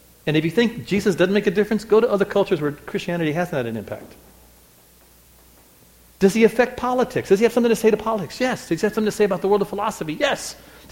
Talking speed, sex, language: 245 wpm, male, English